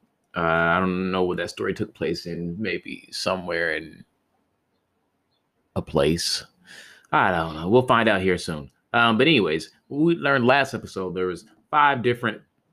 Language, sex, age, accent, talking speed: English, male, 30-49, American, 160 wpm